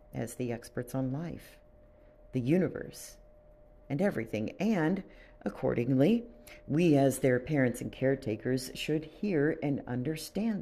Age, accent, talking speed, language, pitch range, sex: 50-69, American, 120 wpm, English, 120-160 Hz, female